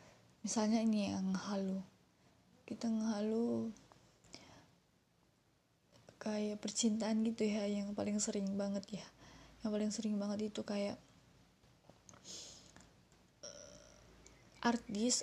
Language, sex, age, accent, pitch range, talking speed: Indonesian, female, 20-39, native, 195-220 Hz, 85 wpm